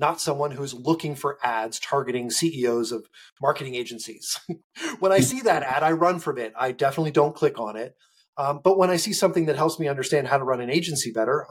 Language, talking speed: English, 220 wpm